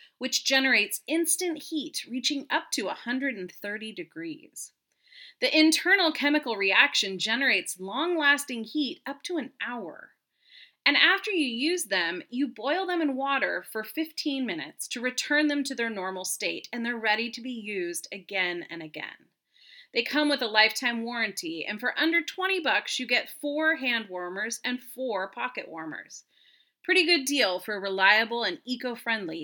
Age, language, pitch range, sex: 30-49, English, 210-310 Hz, female